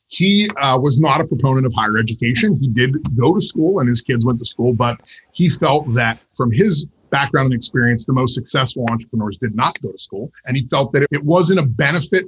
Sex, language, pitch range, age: male, English, 120-160 Hz, 30-49